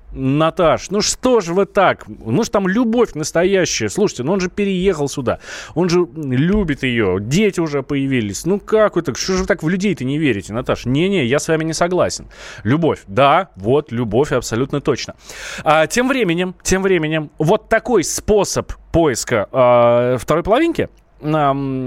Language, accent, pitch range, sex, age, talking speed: Russian, native, 125-185 Hz, male, 20-39, 170 wpm